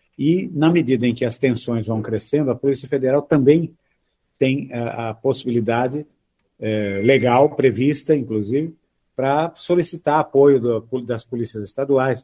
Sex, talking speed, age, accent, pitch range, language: male, 125 wpm, 50-69, Brazilian, 115-145 Hz, Portuguese